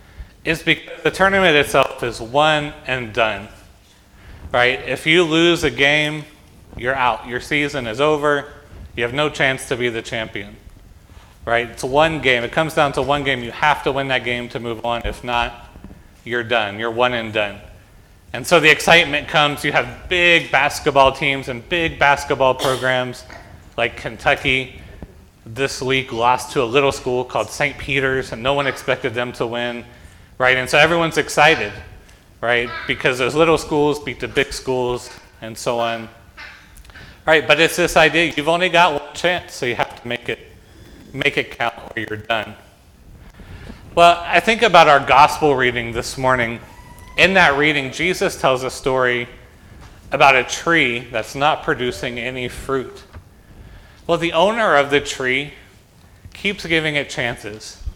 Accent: American